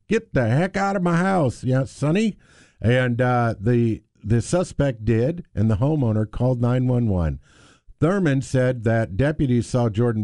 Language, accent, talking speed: English, American, 150 wpm